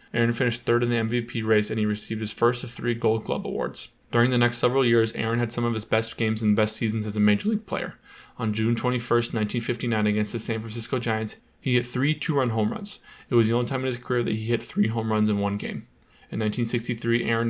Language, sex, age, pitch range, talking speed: English, male, 20-39, 110-120 Hz, 245 wpm